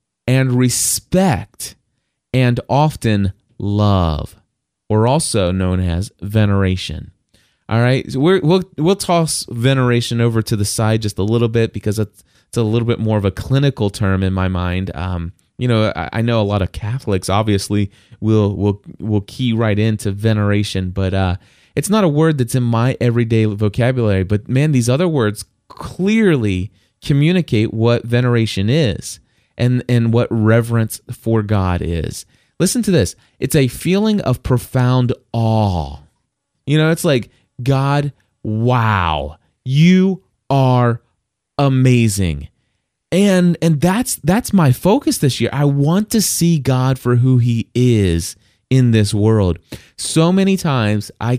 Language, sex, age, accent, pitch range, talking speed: English, male, 20-39, American, 105-135 Hz, 145 wpm